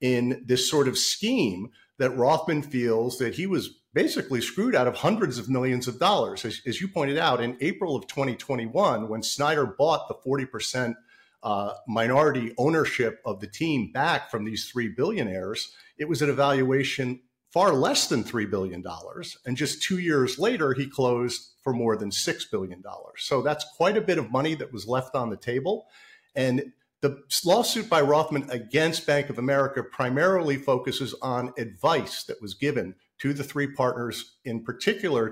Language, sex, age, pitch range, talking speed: English, male, 50-69, 120-145 Hz, 170 wpm